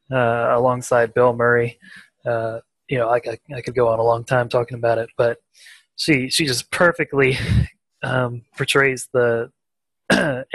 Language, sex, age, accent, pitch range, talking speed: English, male, 20-39, American, 115-135 Hz, 160 wpm